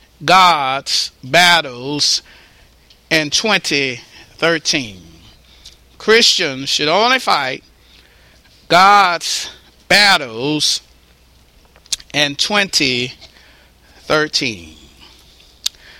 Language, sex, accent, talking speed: English, male, American, 45 wpm